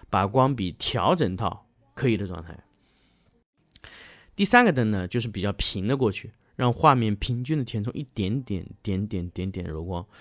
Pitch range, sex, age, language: 105-150 Hz, male, 20-39, Chinese